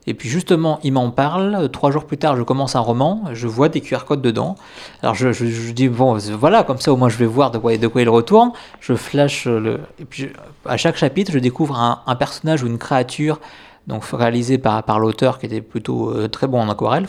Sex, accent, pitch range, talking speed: male, French, 115-145 Hz, 245 wpm